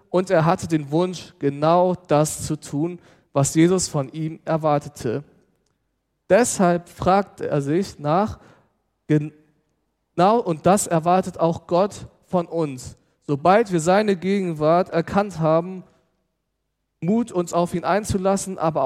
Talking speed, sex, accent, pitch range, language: 125 wpm, male, German, 150-185 Hz, German